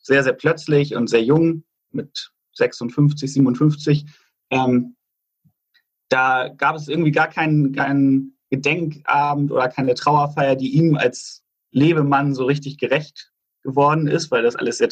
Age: 30-49